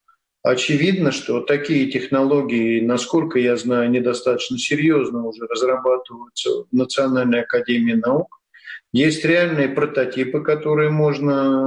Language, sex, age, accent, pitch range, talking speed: Russian, male, 50-69, native, 125-160 Hz, 105 wpm